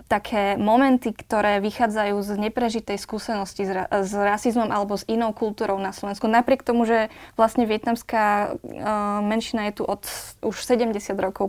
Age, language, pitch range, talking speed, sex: 20-39, Slovak, 205-230 Hz, 155 wpm, female